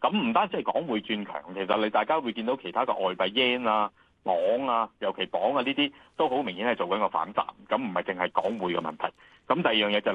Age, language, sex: 30-49, Chinese, male